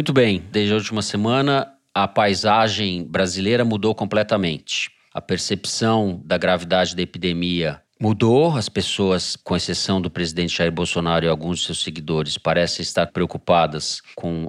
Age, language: 40-59, Portuguese